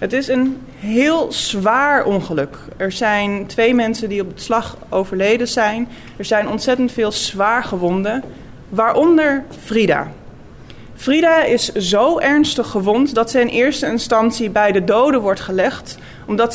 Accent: Dutch